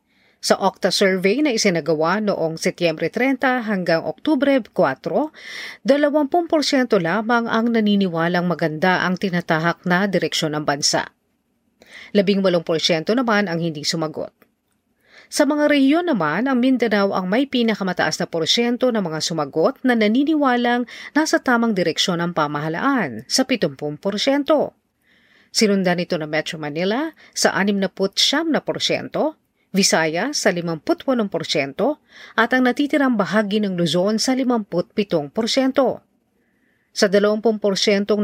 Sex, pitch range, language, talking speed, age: female, 165-245 Hz, Filipino, 115 wpm, 40-59